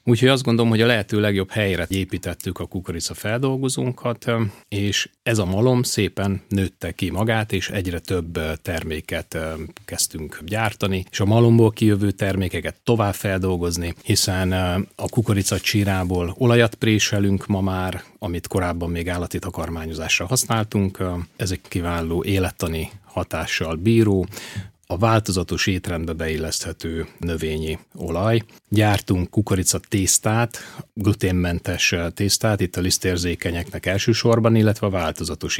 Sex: male